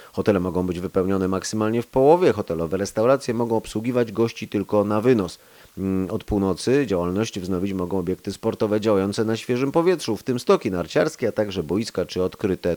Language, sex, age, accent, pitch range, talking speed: Polish, male, 30-49, native, 95-120 Hz, 165 wpm